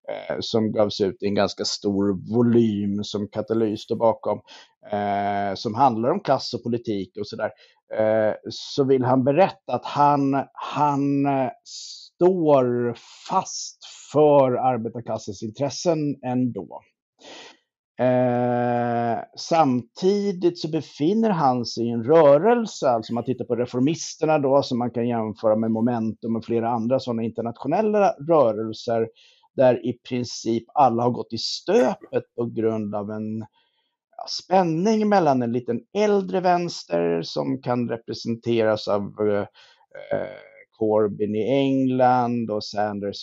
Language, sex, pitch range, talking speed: Swedish, male, 110-140 Hz, 120 wpm